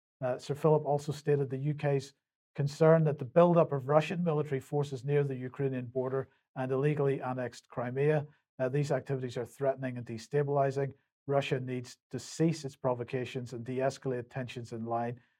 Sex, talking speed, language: male, 160 wpm, English